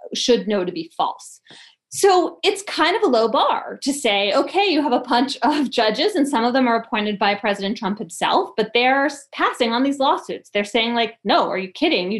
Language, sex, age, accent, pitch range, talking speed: English, female, 20-39, American, 210-275 Hz, 220 wpm